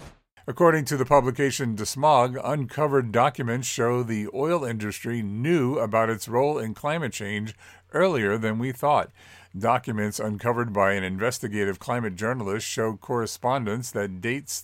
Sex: male